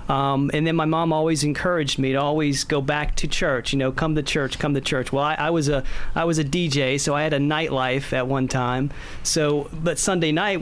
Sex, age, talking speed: male, 40-59, 245 wpm